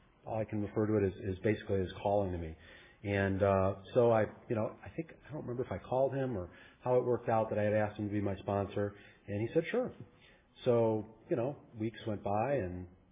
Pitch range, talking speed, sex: 100-120 Hz, 245 wpm, male